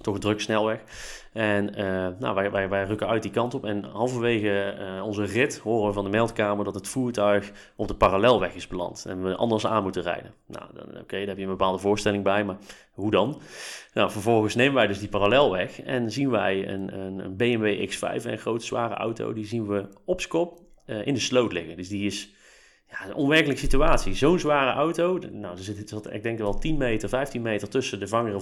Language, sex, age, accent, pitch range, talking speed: Dutch, male, 30-49, Dutch, 100-115 Hz, 220 wpm